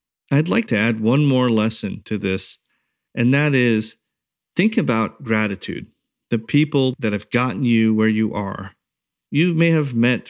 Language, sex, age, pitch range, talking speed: English, male, 40-59, 110-130 Hz, 165 wpm